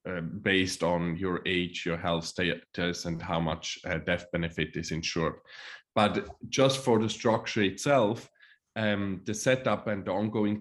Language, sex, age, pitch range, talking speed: English, male, 20-39, 95-110 Hz, 160 wpm